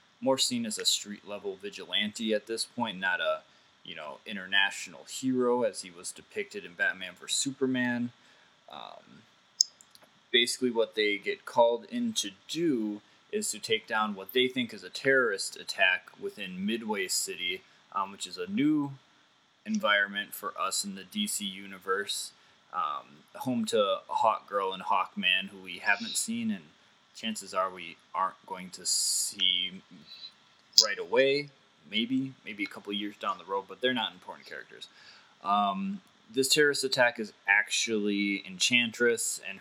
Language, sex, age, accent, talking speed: English, male, 20-39, American, 155 wpm